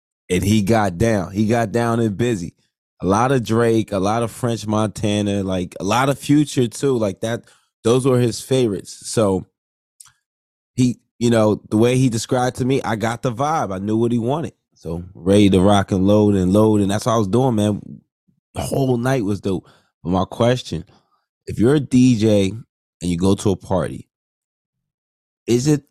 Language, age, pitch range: English, 20-39, 95-115 Hz